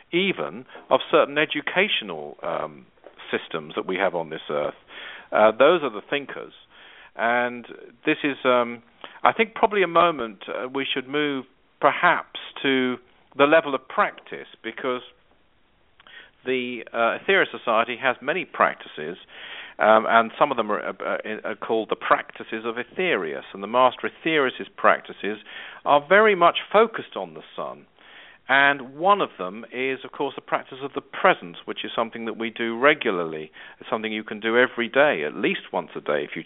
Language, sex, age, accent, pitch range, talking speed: English, male, 50-69, British, 115-140 Hz, 170 wpm